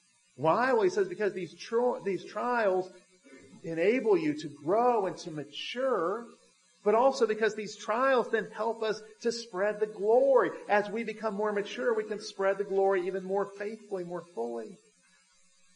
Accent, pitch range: American, 135-205 Hz